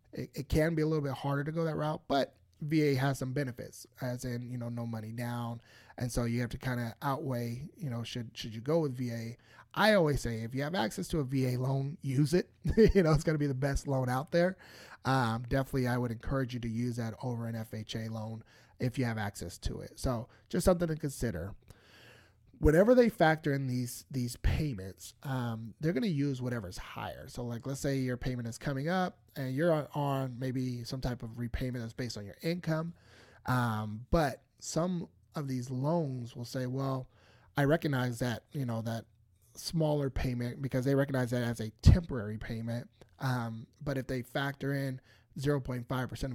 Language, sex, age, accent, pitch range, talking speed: English, male, 30-49, American, 115-140 Hz, 205 wpm